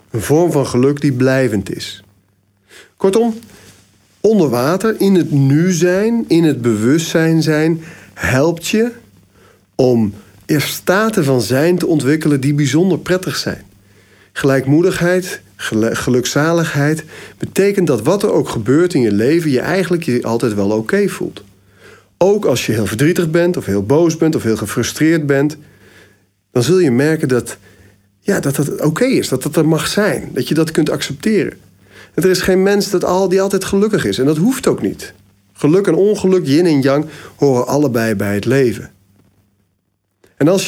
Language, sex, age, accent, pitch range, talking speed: Dutch, male, 40-59, Dutch, 110-175 Hz, 165 wpm